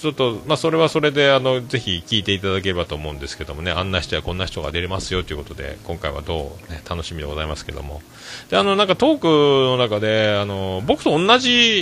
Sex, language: male, Japanese